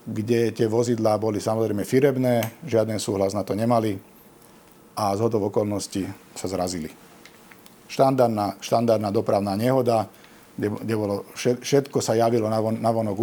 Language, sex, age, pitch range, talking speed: Slovak, male, 50-69, 100-120 Hz, 125 wpm